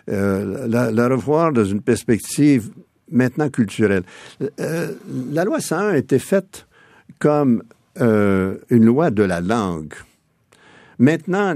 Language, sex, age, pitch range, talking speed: French, male, 60-79, 100-140 Hz, 125 wpm